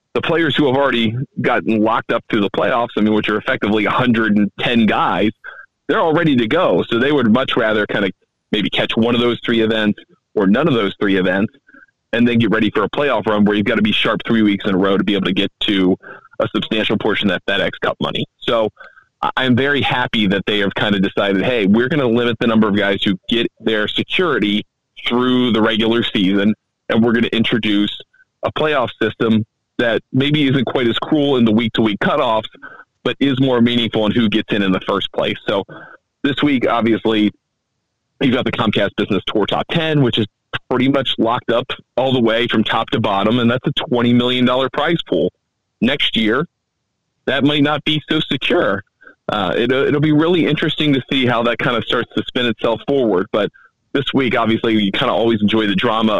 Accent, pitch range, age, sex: American, 105-130 Hz, 30-49, male